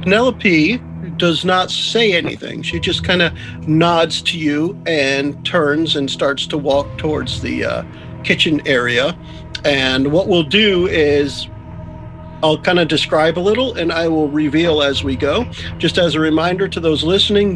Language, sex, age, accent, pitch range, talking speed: English, male, 50-69, American, 140-175 Hz, 165 wpm